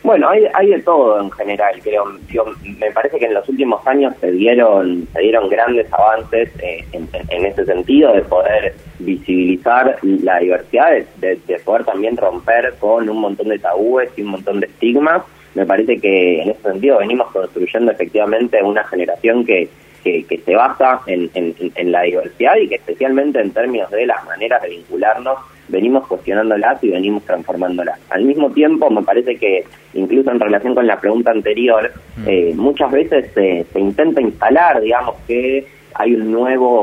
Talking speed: 175 wpm